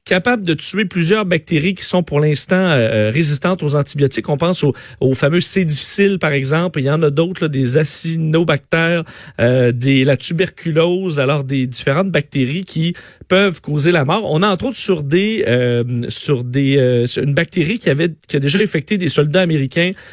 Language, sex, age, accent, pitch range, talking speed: French, male, 40-59, Canadian, 140-185 Hz, 190 wpm